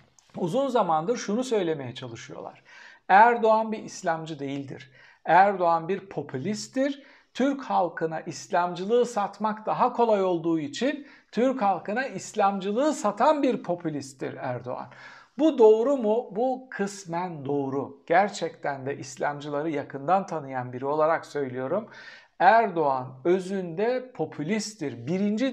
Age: 60-79